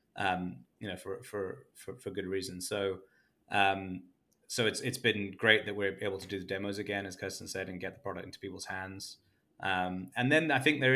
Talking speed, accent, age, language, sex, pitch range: 220 wpm, British, 20-39, English, male, 90-100 Hz